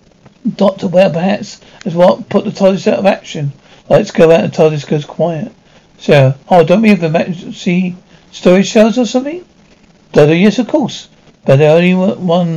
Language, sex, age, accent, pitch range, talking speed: English, male, 60-79, British, 155-195 Hz, 175 wpm